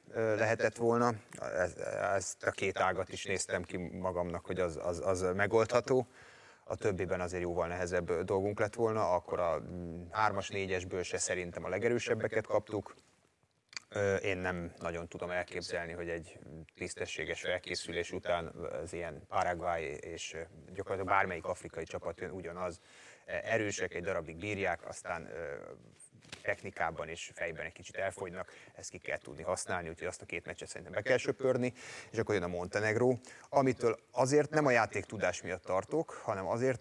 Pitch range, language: 90-115 Hz, Hungarian